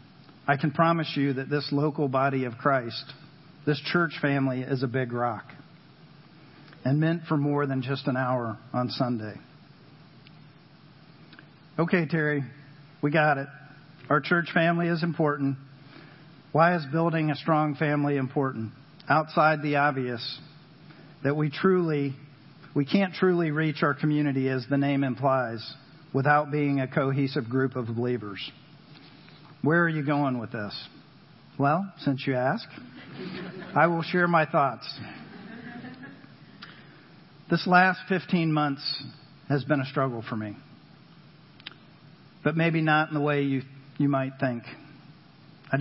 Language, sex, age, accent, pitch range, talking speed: English, male, 50-69, American, 135-160 Hz, 135 wpm